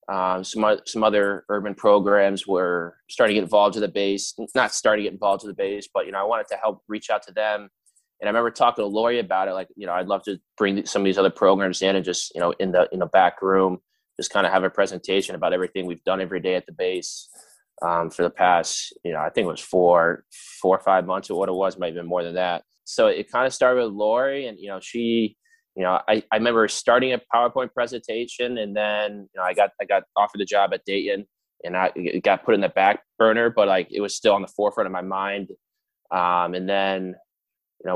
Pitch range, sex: 95-110 Hz, male